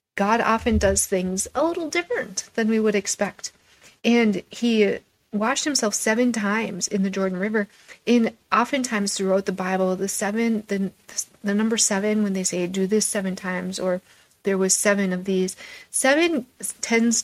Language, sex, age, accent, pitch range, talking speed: English, female, 30-49, American, 185-225 Hz, 165 wpm